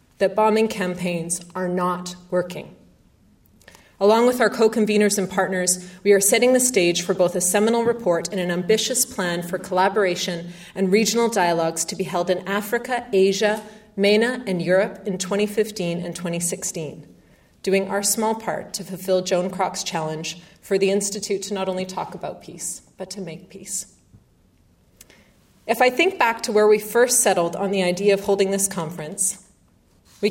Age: 30-49